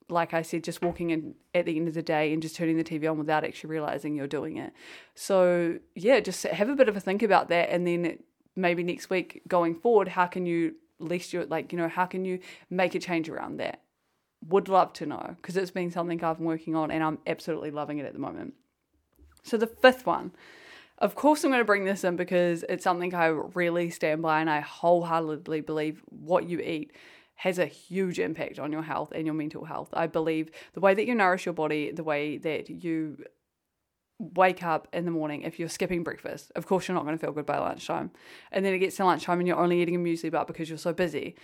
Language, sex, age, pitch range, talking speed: English, female, 20-39, 160-185 Hz, 240 wpm